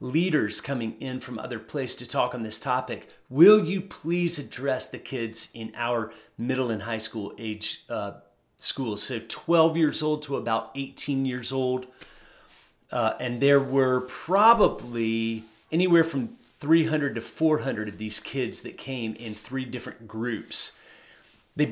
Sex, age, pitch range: male, 40-59, 120-155 Hz